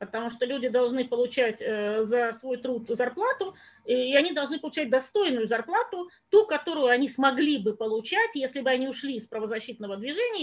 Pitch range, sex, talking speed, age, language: 230-290 Hz, female, 160 wpm, 30-49, English